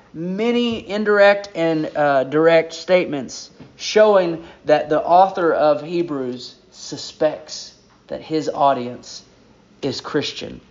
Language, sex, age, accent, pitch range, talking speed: English, male, 30-49, American, 155-200 Hz, 100 wpm